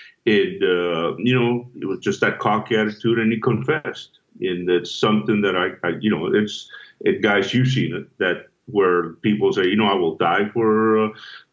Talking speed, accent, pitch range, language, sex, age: 200 wpm, American, 90-120 Hz, English, male, 50-69